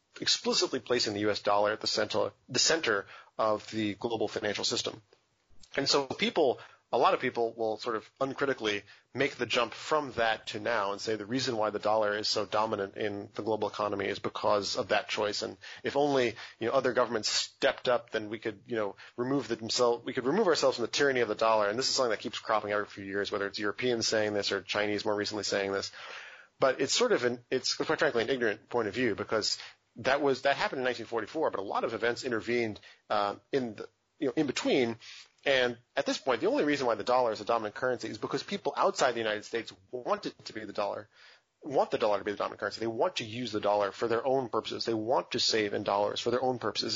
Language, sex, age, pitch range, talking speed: English, male, 30-49, 105-130 Hz, 240 wpm